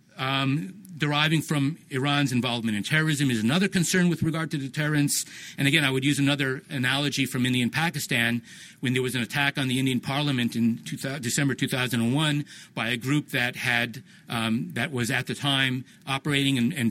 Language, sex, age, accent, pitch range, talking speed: English, male, 50-69, American, 125-155 Hz, 175 wpm